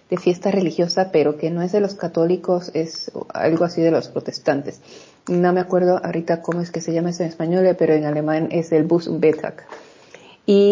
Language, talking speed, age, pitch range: Spanish, 200 wpm, 40-59, 180-225 Hz